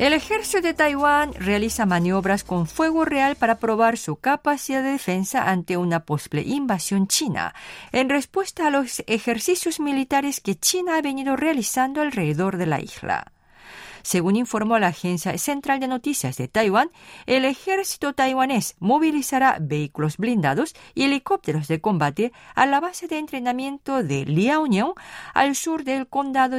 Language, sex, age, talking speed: Spanish, female, 50-69, 145 wpm